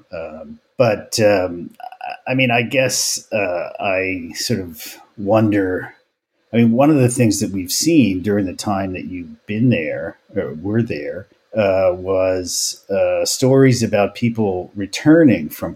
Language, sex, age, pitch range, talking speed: English, male, 50-69, 95-130 Hz, 150 wpm